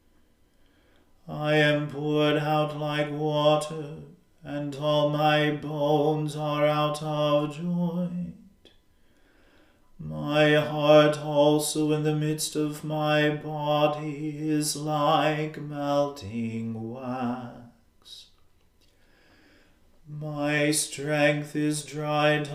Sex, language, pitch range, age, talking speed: male, English, 130-150 Hz, 40-59, 85 wpm